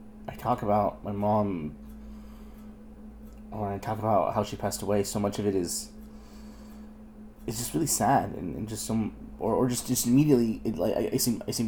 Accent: American